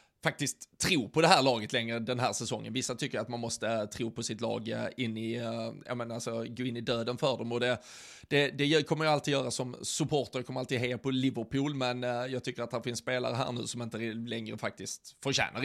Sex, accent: male, native